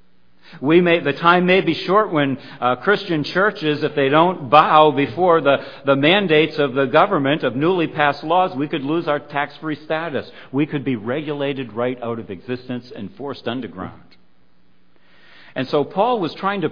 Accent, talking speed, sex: American, 170 wpm, male